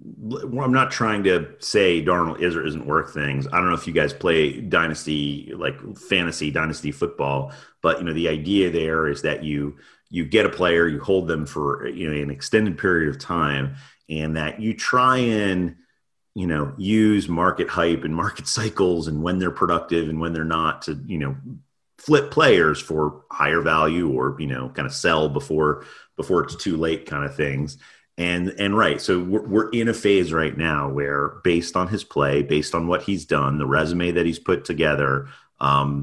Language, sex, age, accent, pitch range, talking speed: English, male, 30-49, American, 70-90 Hz, 195 wpm